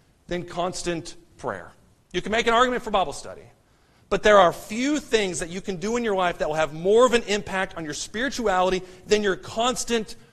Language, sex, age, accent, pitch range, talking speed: English, male, 40-59, American, 195-240 Hz, 210 wpm